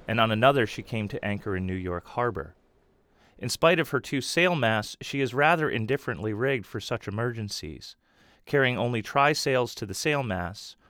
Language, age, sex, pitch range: English, 30-49, male, 100-135 Hz